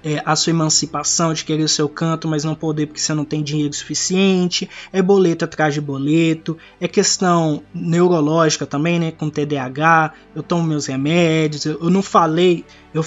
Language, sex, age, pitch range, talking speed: Portuguese, male, 20-39, 155-185 Hz, 175 wpm